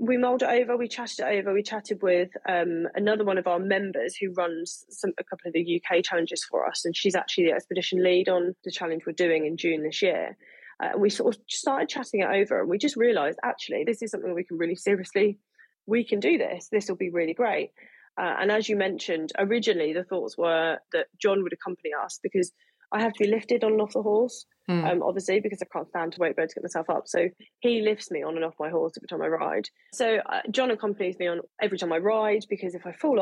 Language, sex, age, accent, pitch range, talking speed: English, female, 20-39, British, 175-220 Hz, 245 wpm